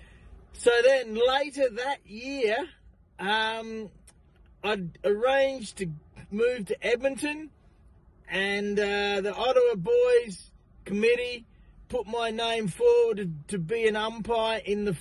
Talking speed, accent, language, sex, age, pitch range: 110 wpm, Australian, English, male, 40-59, 215-275 Hz